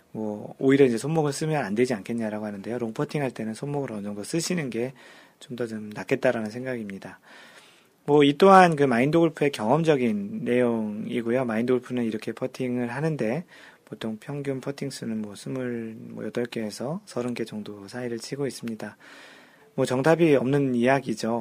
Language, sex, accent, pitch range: Korean, male, native, 115-145 Hz